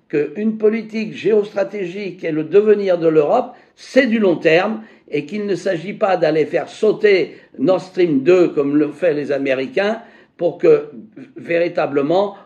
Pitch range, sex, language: 160-260 Hz, male, French